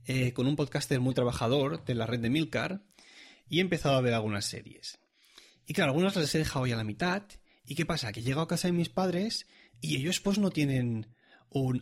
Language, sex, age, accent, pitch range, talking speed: Spanish, male, 30-49, Spanish, 115-165 Hz, 225 wpm